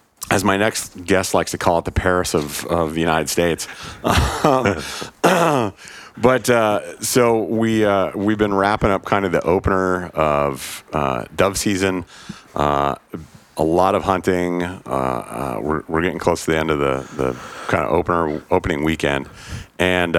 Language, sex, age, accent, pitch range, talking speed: English, male, 40-59, American, 75-95 Hz, 170 wpm